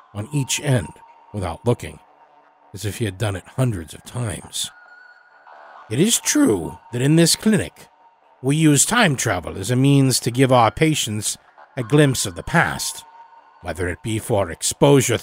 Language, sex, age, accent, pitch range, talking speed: English, male, 50-69, American, 105-165 Hz, 165 wpm